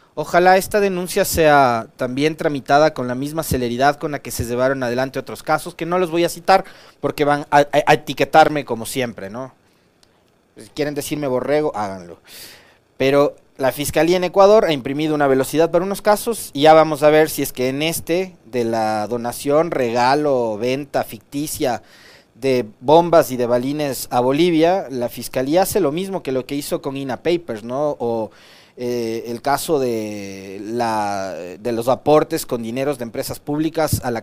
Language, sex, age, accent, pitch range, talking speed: Spanish, male, 30-49, Mexican, 125-155 Hz, 175 wpm